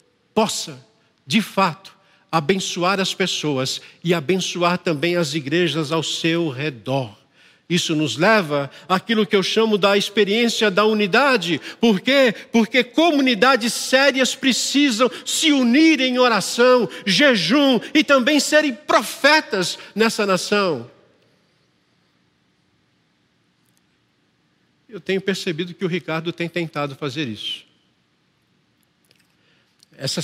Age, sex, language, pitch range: 60-79, male, Portuguese, 135-210 Hz